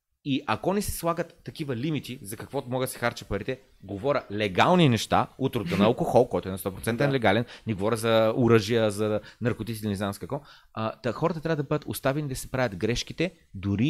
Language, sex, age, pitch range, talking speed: Bulgarian, male, 30-49, 110-145 Hz, 200 wpm